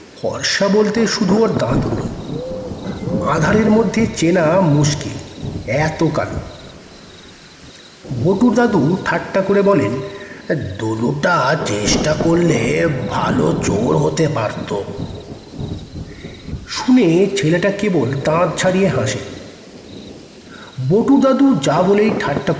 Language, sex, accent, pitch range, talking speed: Bengali, male, native, 135-205 Hz, 60 wpm